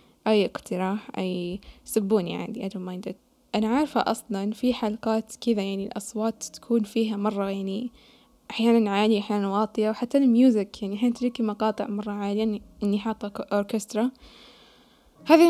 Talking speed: 140 wpm